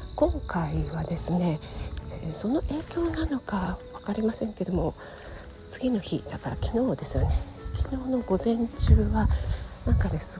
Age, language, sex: 40-59, Japanese, female